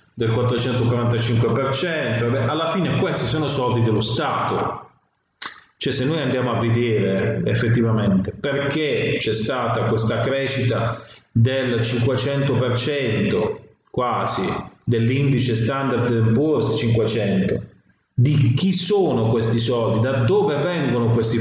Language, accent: Italian, native